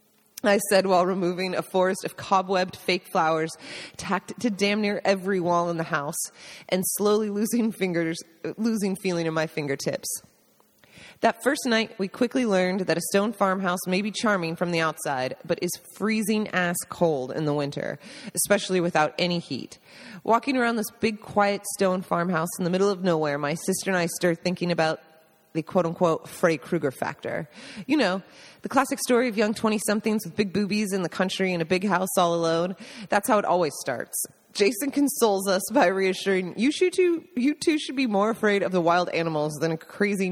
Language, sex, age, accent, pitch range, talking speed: English, female, 30-49, American, 170-225 Hz, 185 wpm